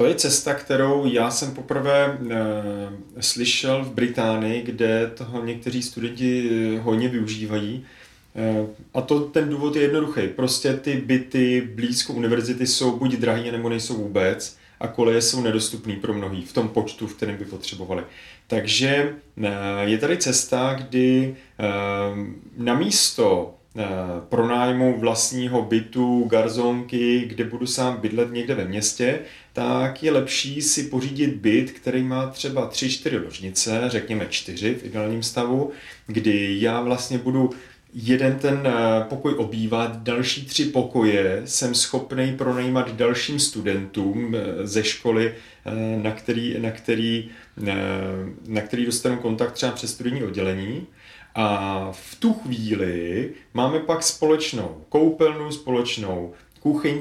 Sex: male